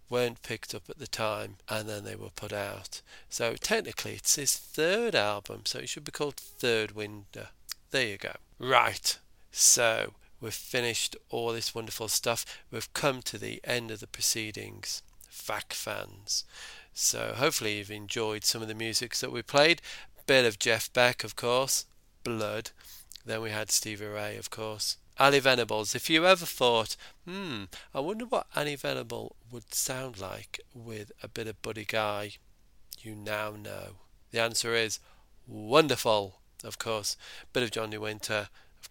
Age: 40-59